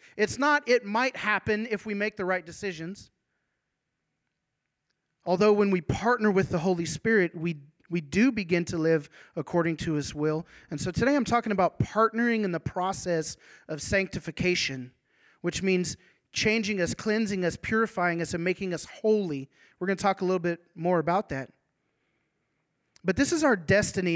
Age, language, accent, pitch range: 30-49, English, American, 165-210 Hz